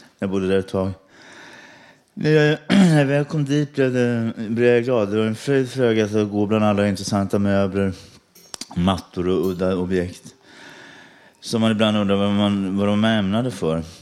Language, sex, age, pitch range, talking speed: Swedish, male, 30-49, 95-120 Hz, 145 wpm